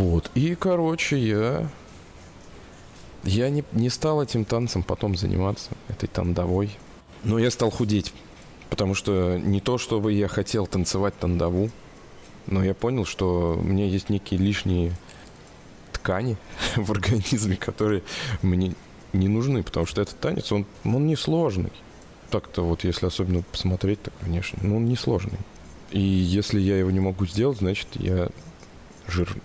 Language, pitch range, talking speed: Russian, 90-110 Hz, 145 wpm